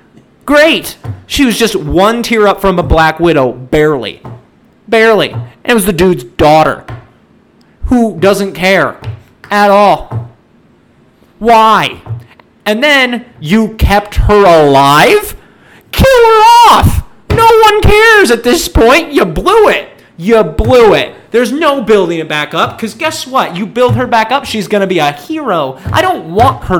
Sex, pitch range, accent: male, 150-245 Hz, American